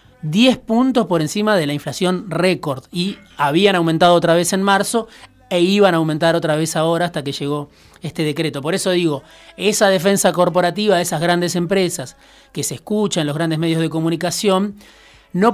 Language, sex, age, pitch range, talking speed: Spanish, male, 30-49, 155-200 Hz, 180 wpm